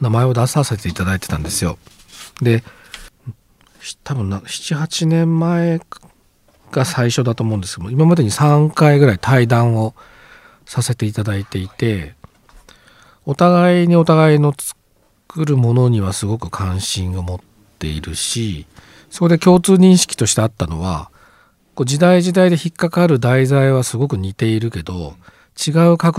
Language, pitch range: Japanese, 90-140 Hz